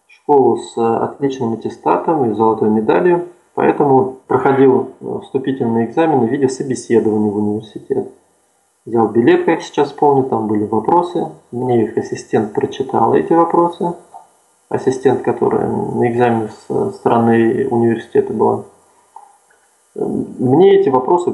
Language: Russian